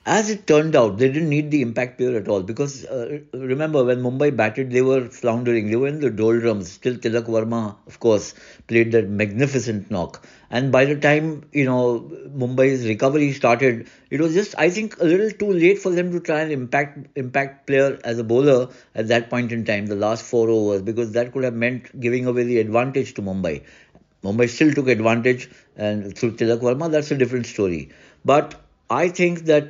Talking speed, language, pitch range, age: 200 wpm, English, 115-140 Hz, 60-79